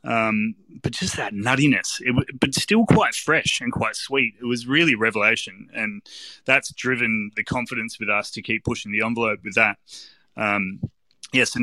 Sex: male